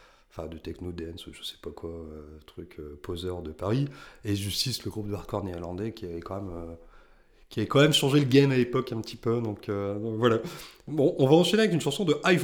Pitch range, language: 100-135 Hz, French